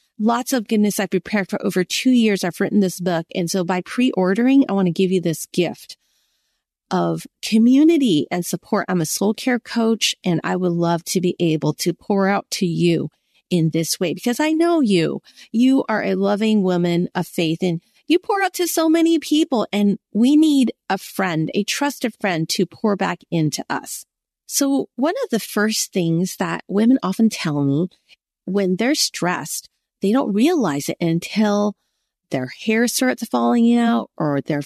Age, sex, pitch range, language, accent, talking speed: 30-49, female, 180-245 Hz, English, American, 185 wpm